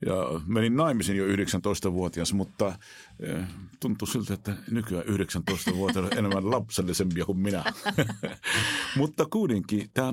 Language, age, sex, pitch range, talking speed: Finnish, 50-69, male, 90-110 Hz, 115 wpm